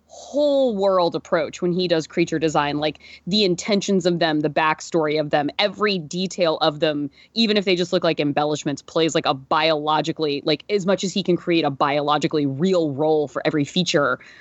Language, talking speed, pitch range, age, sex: English, 190 wpm, 160-215 Hz, 20-39, female